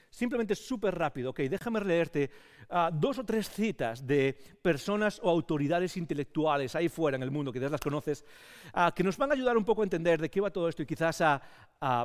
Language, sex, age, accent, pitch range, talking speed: English, male, 40-59, Spanish, 145-195 Hz, 220 wpm